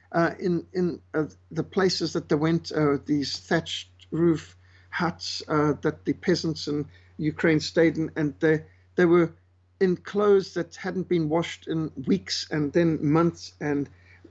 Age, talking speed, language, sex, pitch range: 60-79, 160 wpm, English, male, 135-185 Hz